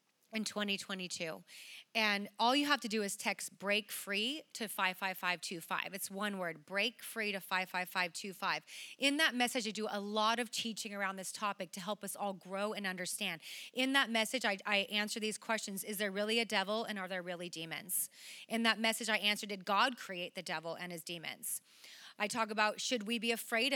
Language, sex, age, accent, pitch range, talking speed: English, female, 30-49, American, 200-240 Hz, 195 wpm